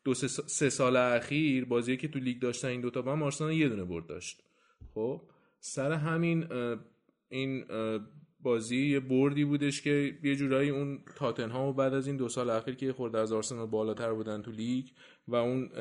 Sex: male